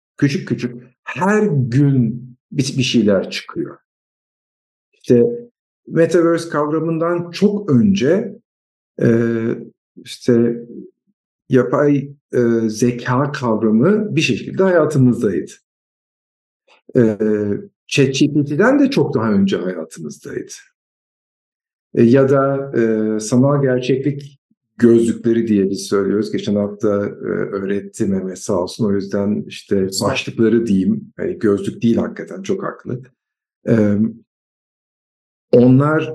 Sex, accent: male, native